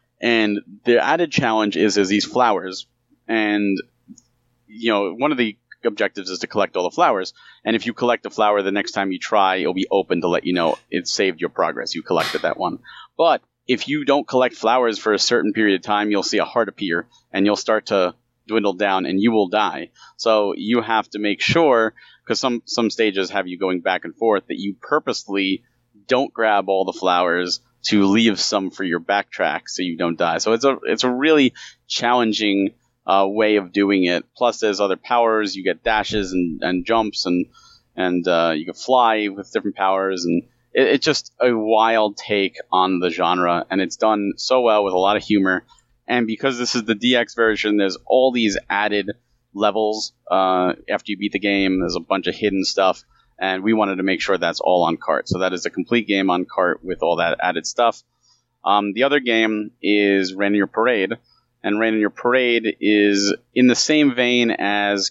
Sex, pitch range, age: male, 95-115 Hz, 30-49